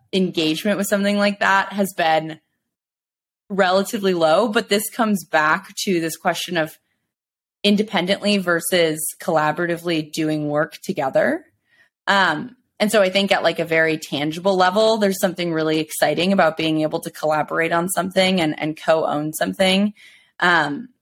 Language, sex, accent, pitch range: English, female, American, 155-195 Hz